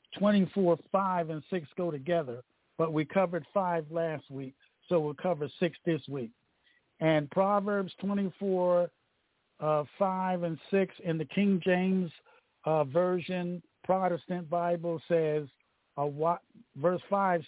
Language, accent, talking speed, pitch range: English, American, 125 wpm, 155-185 Hz